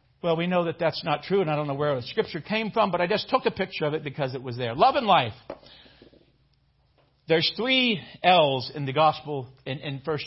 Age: 50-69